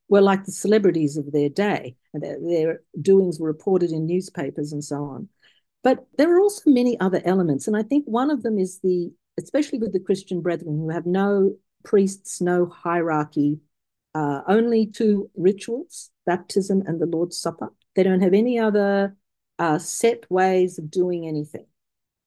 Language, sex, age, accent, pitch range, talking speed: English, female, 50-69, Australian, 155-200 Hz, 170 wpm